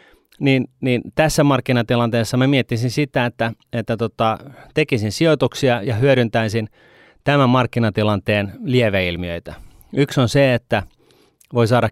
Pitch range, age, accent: 100-125 Hz, 30-49, native